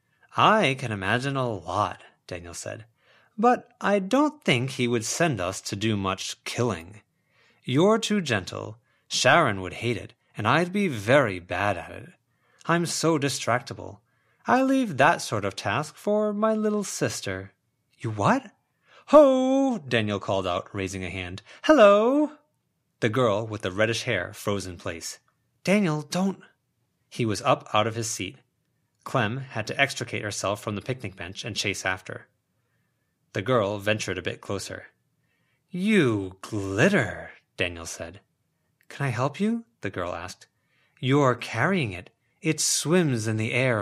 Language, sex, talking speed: English, male, 150 wpm